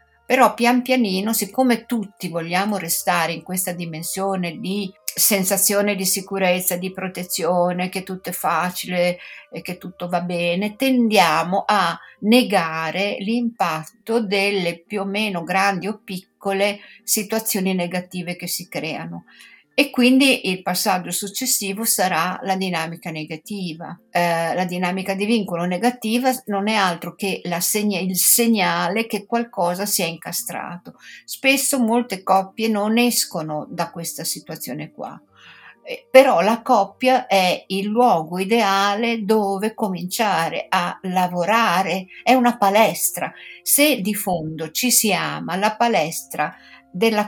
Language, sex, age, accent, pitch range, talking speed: Italian, female, 50-69, native, 180-225 Hz, 130 wpm